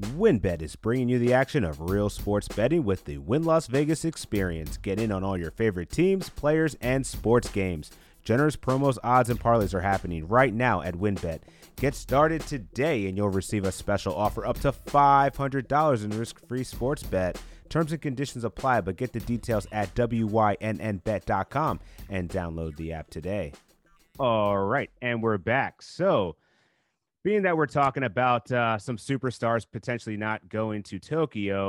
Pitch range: 100-130 Hz